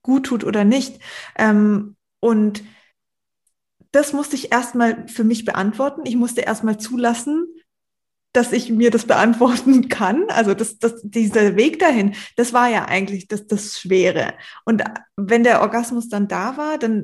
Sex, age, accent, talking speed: female, 20-39, German, 155 wpm